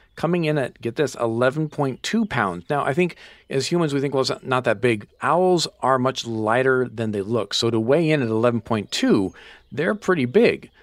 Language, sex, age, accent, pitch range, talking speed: English, male, 40-59, American, 115-150 Hz, 195 wpm